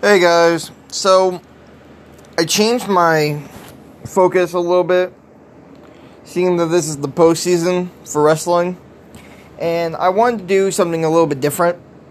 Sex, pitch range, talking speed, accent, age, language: male, 165-195 Hz, 140 wpm, American, 20-39, English